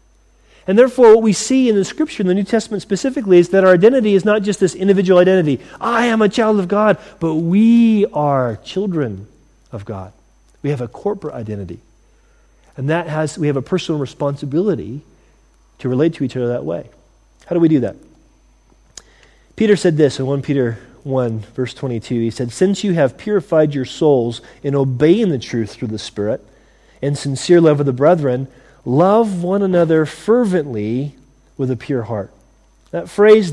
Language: English